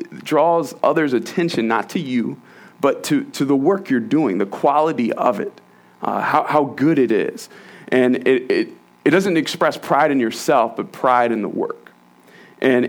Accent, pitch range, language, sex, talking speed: American, 105-140 Hz, English, male, 175 wpm